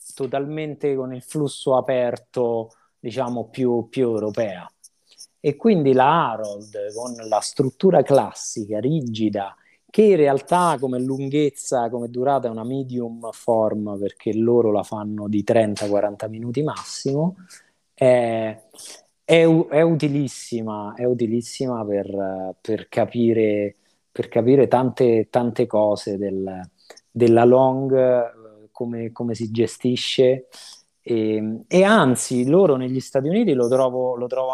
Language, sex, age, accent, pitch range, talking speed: Italian, male, 30-49, native, 110-140 Hz, 115 wpm